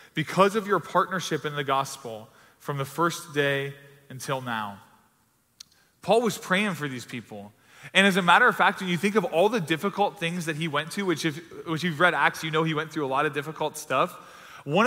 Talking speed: 220 wpm